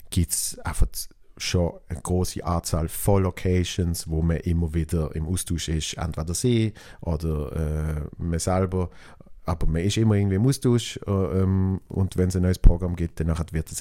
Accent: German